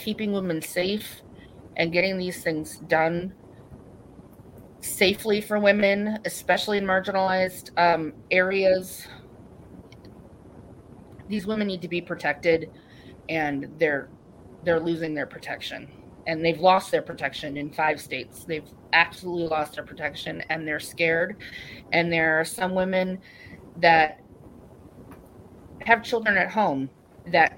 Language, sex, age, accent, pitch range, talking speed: English, female, 30-49, American, 160-190 Hz, 120 wpm